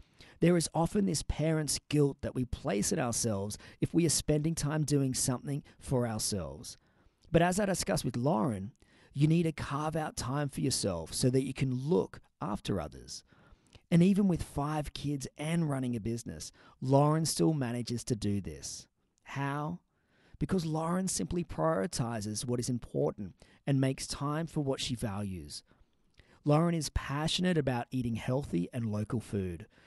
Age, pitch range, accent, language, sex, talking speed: 40-59, 115-150 Hz, Australian, English, male, 160 wpm